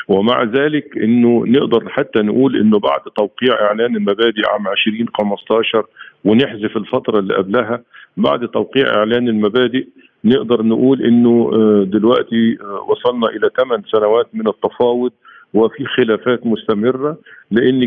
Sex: male